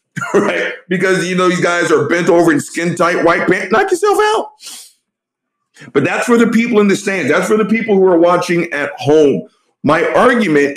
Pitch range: 160-225 Hz